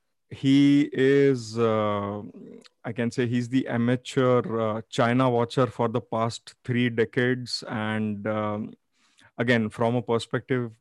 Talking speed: 130 wpm